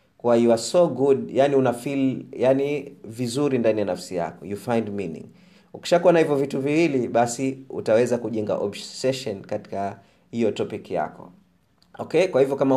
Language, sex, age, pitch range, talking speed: Swahili, male, 30-49, 110-140 Hz, 155 wpm